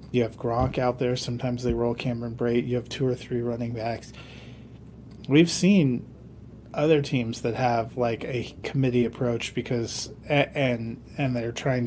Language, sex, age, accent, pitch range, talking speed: English, male, 30-49, American, 115-130 Hz, 160 wpm